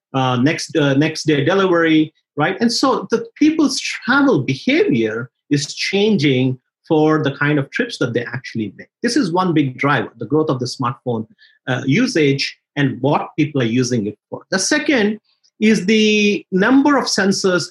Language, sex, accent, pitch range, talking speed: English, male, Indian, 135-200 Hz, 170 wpm